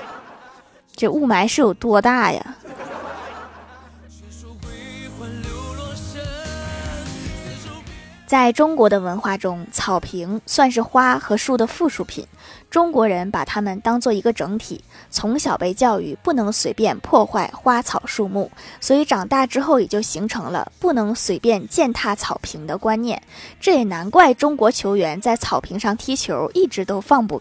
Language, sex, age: Chinese, female, 20-39